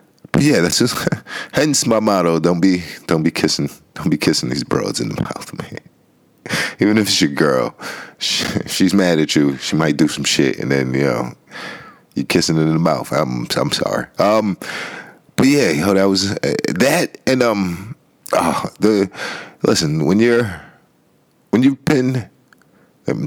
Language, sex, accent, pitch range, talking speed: English, male, American, 80-105 Hz, 170 wpm